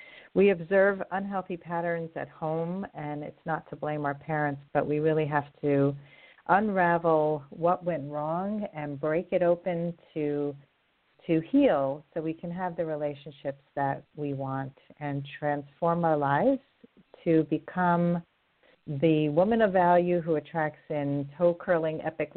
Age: 50-69